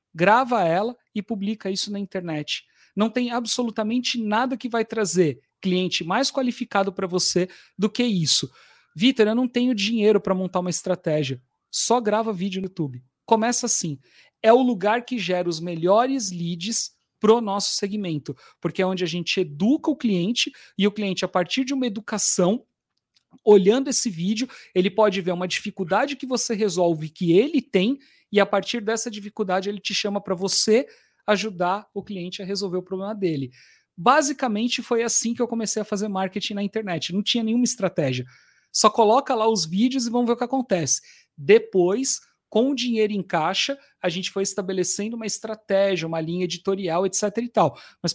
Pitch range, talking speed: 185-230 Hz, 180 wpm